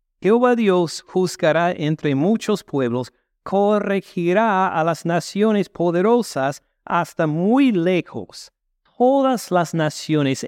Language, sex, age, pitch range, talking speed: Spanish, male, 50-69, 145-205 Hz, 95 wpm